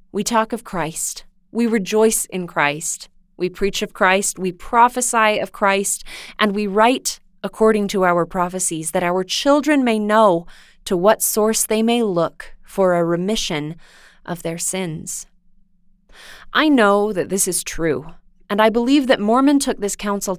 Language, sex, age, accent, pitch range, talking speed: English, female, 20-39, American, 175-205 Hz, 160 wpm